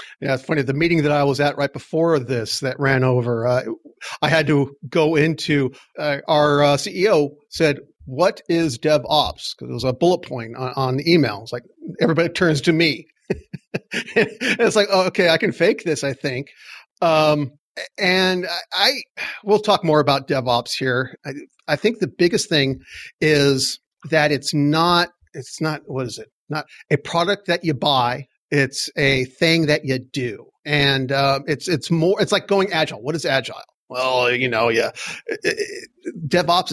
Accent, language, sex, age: American, English, male, 50-69